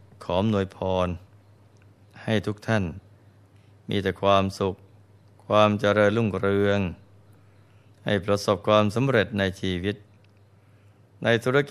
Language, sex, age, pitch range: Thai, male, 20-39, 100-110 Hz